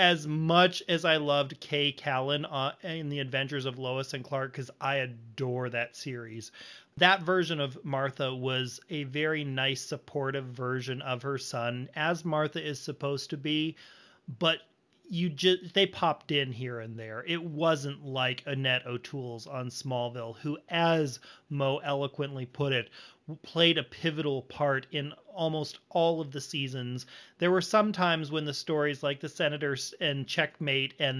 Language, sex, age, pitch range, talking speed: English, male, 30-49, 135-170 Hz, 160 wpm